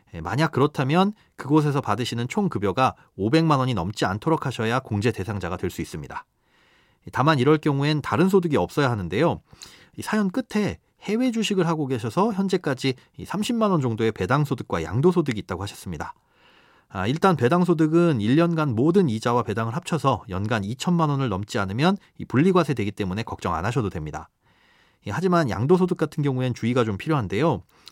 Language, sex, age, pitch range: Korean, male, 30-49, 110-170 Hz